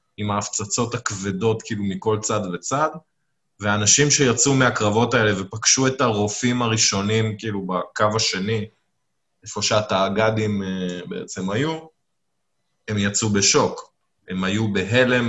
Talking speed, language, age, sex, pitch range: 110 wpm, Hebrew, 20-39, male, 105-140 Hz